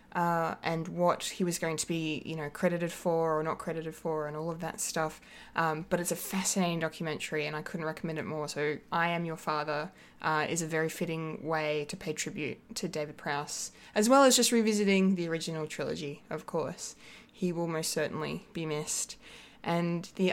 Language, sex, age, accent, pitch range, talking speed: English, female, 20-39, Australian, 160-195 Hz, 200 wpm